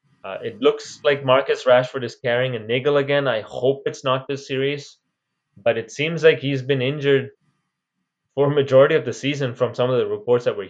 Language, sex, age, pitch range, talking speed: English, male, 20-39, 125-150 Hz, 210 wpm